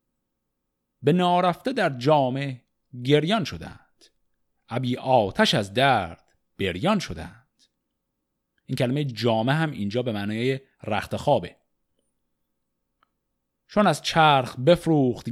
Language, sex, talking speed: Persian, male, 95 wpm